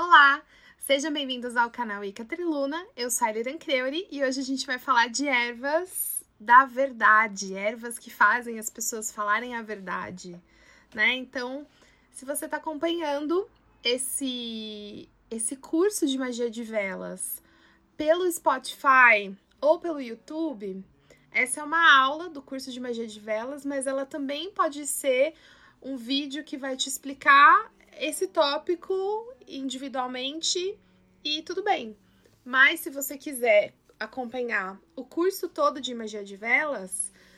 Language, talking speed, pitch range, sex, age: Portuguese, 140 wpm, 240-315 Hz, female, 20-39